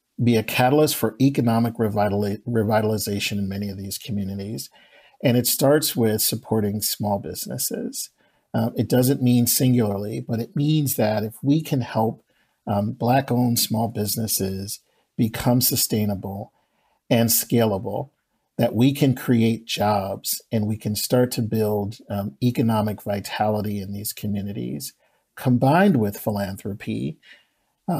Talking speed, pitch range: 125 wpm, 105-125 Hz